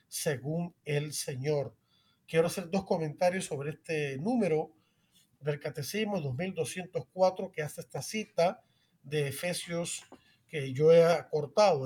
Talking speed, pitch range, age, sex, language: 115 wpm, 150-185 Hz, 40-59, male, Spanish